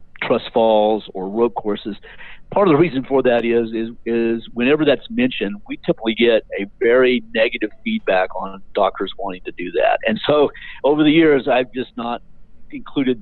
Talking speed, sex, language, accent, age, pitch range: 175 wpm, male, English, American, 50-69, 115-150 Hz